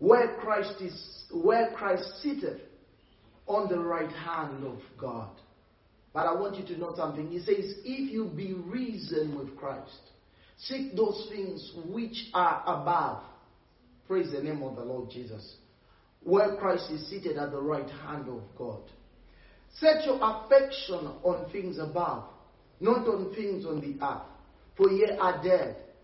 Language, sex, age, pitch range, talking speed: English, male, 40-59, 150-220 Hz, 150 wpm